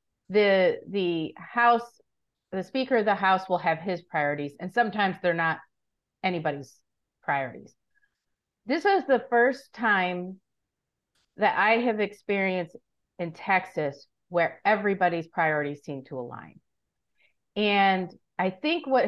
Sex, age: female, 40-59